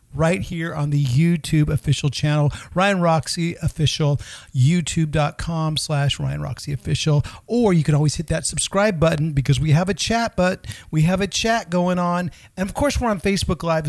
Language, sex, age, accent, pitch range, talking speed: English, male, 50-69, American, 135-165 Hz, 180 wpm